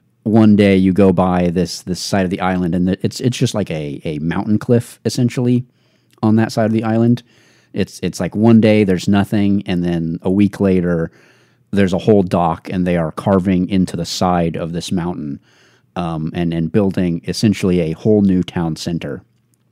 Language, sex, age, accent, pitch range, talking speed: English, male, 40-59, American, 85-105 Hz, 190 wpm